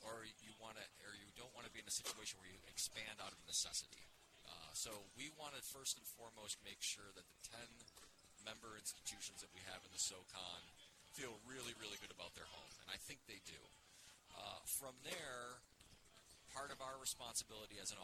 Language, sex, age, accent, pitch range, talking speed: English, male, 30-49, American, 90-110 Hz, 195 wpm